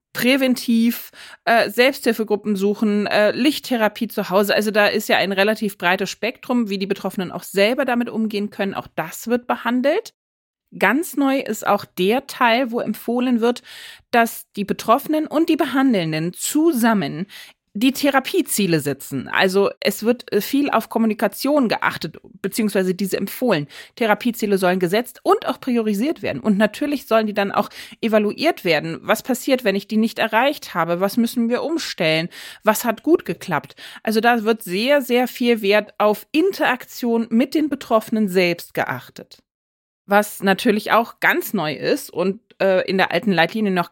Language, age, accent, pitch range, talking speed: German, 30-49, German, 195-250 Hz, 155 wpm